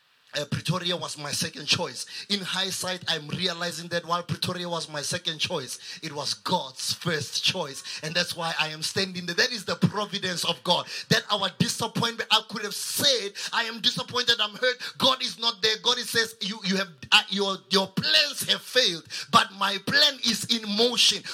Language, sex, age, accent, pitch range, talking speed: English, male, 30-49, South African, 195-255 Hz, 195 wpm